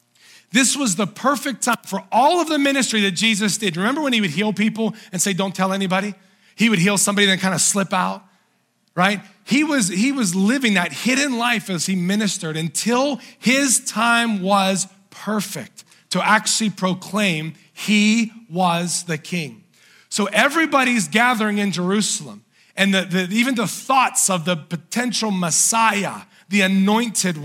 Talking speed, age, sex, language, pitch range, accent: 155 wpm, 40-59, male, English, 180-220 Hz, American